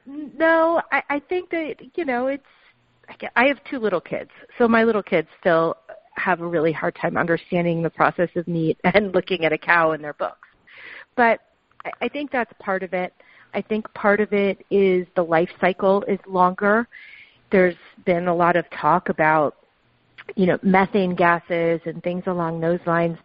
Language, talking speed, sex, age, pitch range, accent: English, 180 wpm, female, 40-59, 170-235 Hz, American